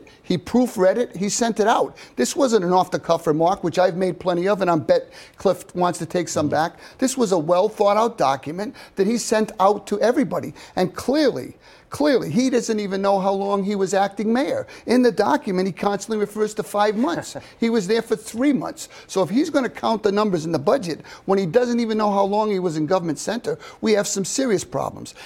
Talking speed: 220 wpm